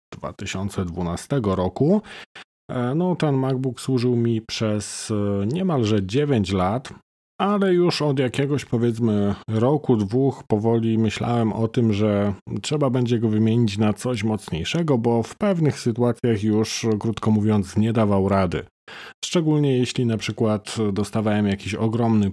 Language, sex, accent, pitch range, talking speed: Polish, male, native, 100-130 Hz, 125 wpm